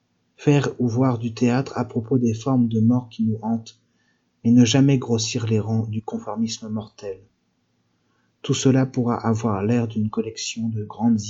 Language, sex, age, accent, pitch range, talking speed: French, male, 50-69, French, 110-130 Hz, 170 wpm